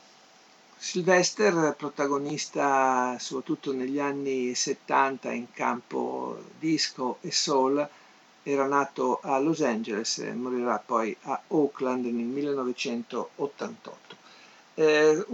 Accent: native